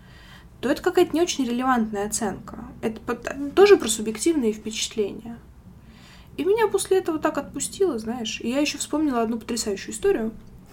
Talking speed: 145 wpm